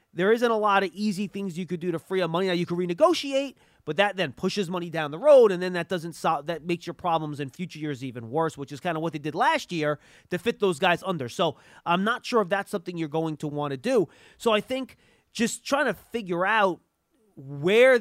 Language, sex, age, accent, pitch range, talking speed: English, male, 30-49, American, 165-220 Hz, 255 wpm